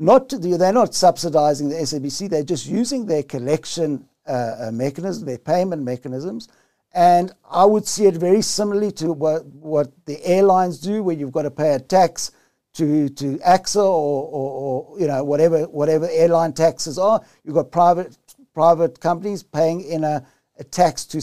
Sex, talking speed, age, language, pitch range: male, 175 wpm, 60-79, English, 145-190 Hz